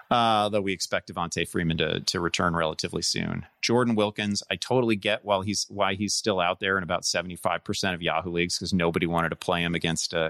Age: 30-49